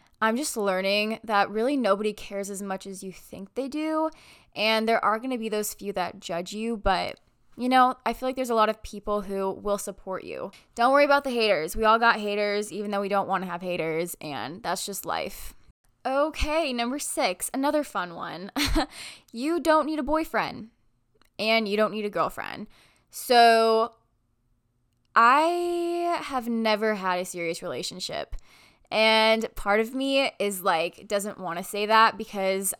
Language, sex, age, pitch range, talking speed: English, female, 10-29, 195-245 Hz, 180 wpm